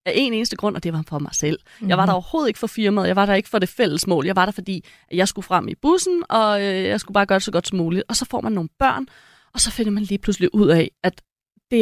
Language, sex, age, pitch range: Danish, female, 30-49, 185-225 Hz